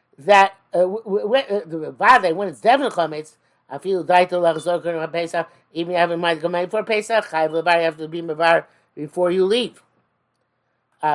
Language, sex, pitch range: English, male, 155-190 Hz